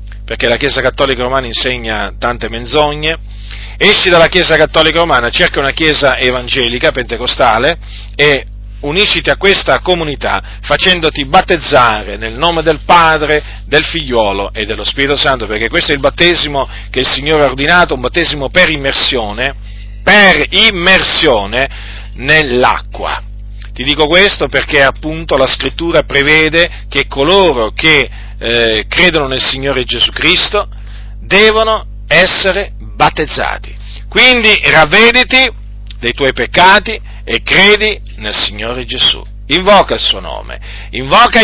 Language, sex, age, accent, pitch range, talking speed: Italian, male, 40-59, native, 105-160 Hz, 125 wpm